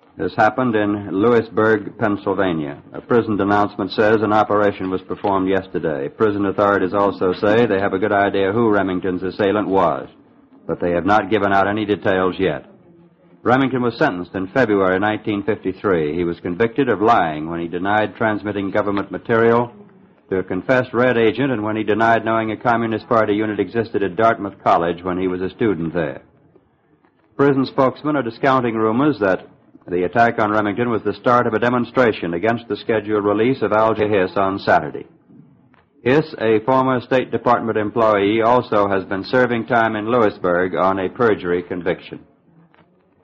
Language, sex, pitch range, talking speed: English, male, 95-115 Hz, 165 wpm